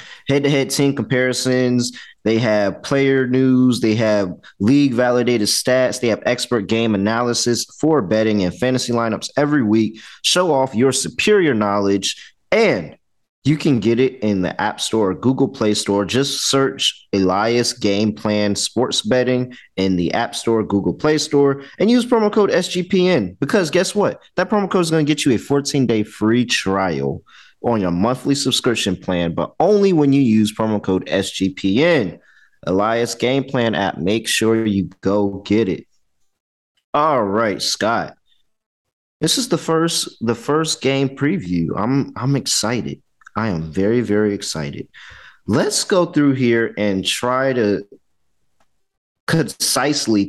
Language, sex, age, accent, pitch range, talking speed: English, male, 30-49, American, 100-140 Hz, 150 wpm